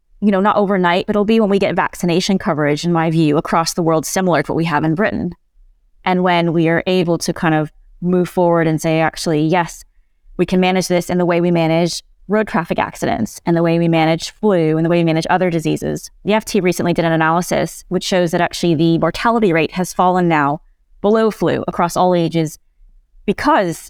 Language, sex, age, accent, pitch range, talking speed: English, female, 20-39, American, 165-195 Hz, 215 wpm